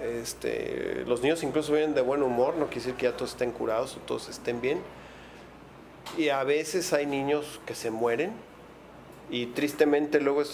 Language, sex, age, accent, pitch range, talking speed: Spanish, male, 40-59, Mexican, 120-145 Hz, 180 wpm